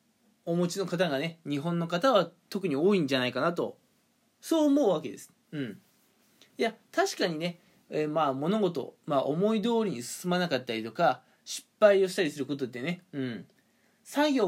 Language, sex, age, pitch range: Japanese, male, 20-39, 165-230 Hz